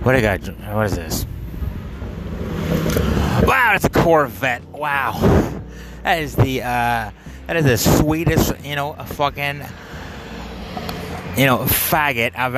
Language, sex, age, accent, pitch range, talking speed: English, male, 30-49, American, 100-140 Hz, 120 wpm